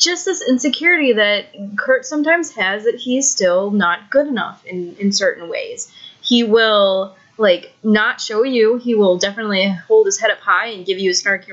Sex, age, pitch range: female, 20-39, 195-245 Hz